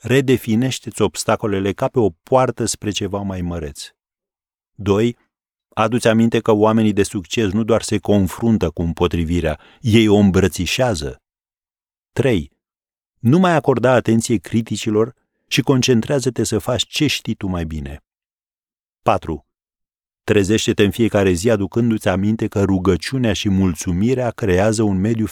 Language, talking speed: Romanian, 130 wpm